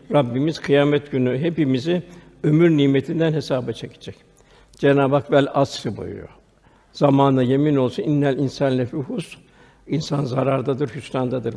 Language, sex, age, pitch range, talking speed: Turkish, male, 60-79, 135-155 Hz, 110 wpm